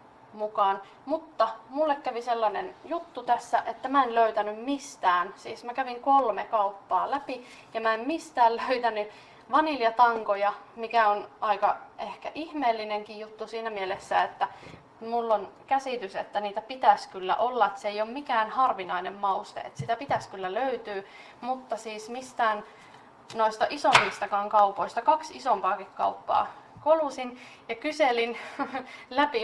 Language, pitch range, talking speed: Finnish, 210-255 Hz, 135 wpm